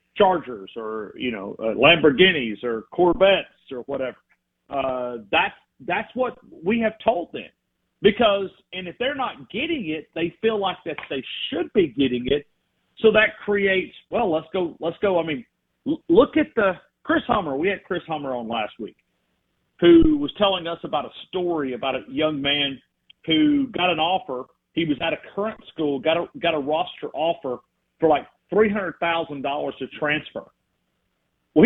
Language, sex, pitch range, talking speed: English, male, 145-215 Hz, 170 wpm